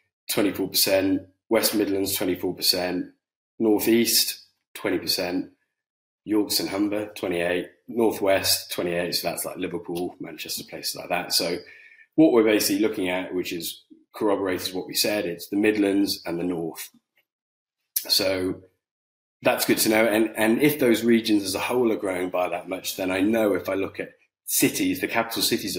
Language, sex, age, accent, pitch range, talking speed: English, male, 20-39, British, 90-105 Hz, 155 wpm